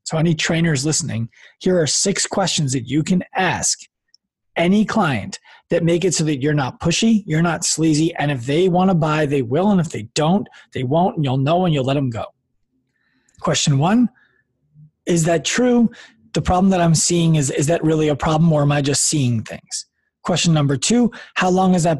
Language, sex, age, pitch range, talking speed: English, male, 30-49, 145-180 Hz, 205 wpm